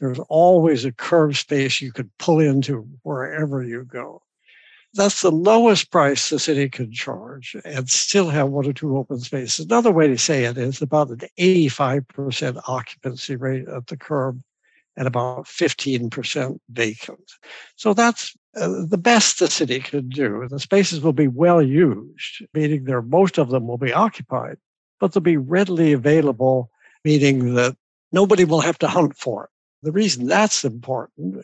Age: 60-79